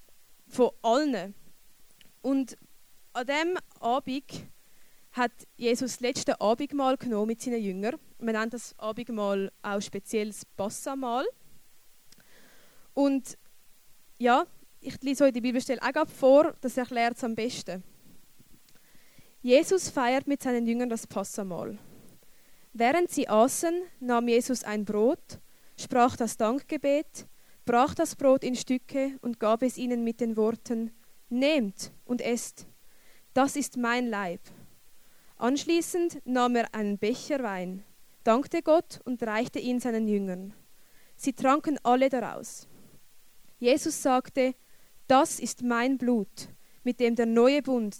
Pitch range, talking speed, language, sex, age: 225-265 Hz, 125 wpm, German, female, 20-39